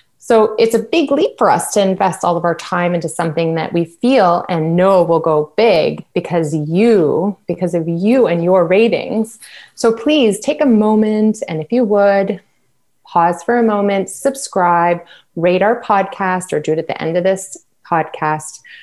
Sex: female